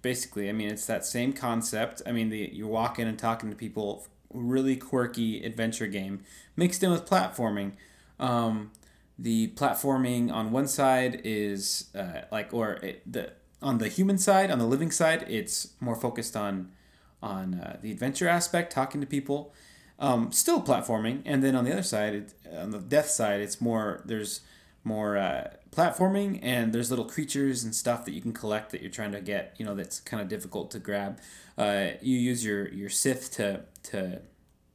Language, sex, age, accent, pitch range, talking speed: English, male, 30-49, American, 105-145 Hz, 180 wpm